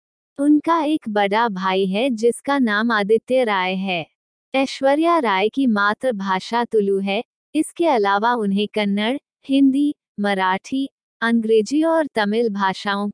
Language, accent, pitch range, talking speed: Hindi, native, 205-265 Hz, 120 wpm